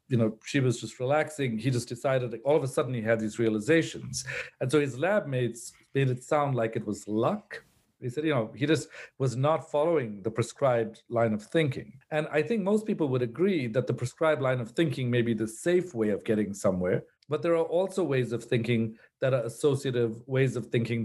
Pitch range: 115-150 Hz